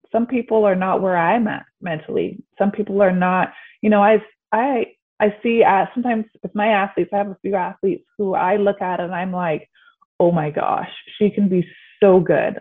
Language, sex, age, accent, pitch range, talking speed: English, female, 20-39, American, 175-220 Hz, 205 wpm